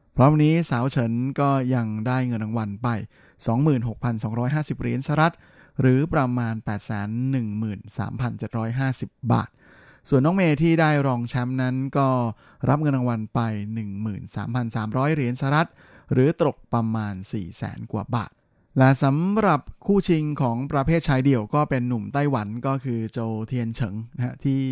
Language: Thai